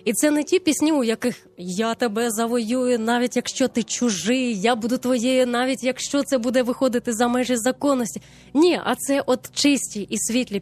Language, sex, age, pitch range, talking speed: Ukrainian, female, 20-39, 205-255 Hz, 180 wpm